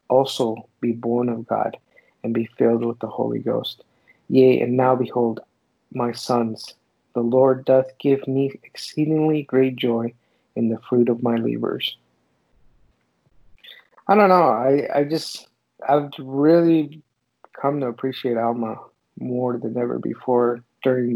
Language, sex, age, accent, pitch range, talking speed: English, male, 50-69, American, 120-155 Hz, 140 wpm